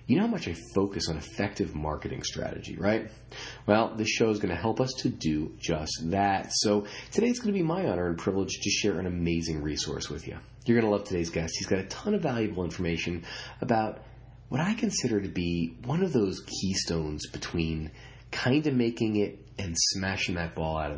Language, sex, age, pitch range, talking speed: English, male, 30-49, 85-125 Hz, 210 wpm